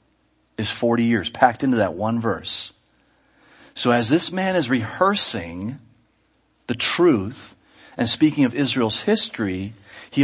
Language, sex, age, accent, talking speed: English, male, 40-59, American, 130 wpm